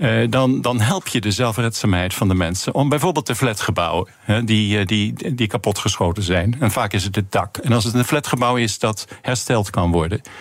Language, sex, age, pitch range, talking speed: Dutch, male, 50-69, 100-125 Hz, 210 wpm